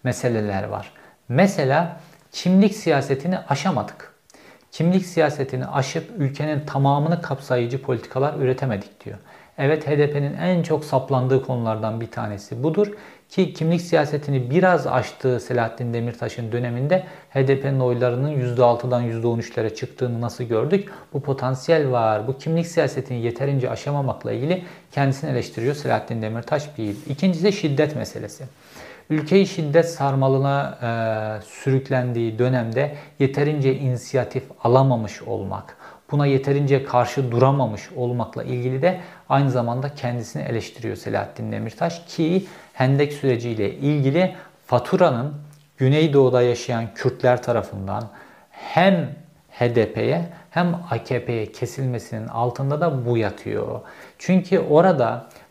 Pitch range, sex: 120-155 Hz, male